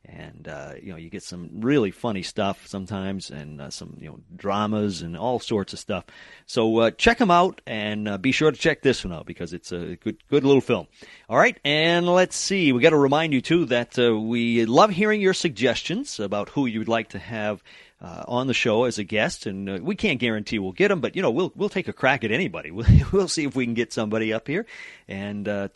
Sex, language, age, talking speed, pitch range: male, English, 40-59, 240 wpm, 95-140 Hz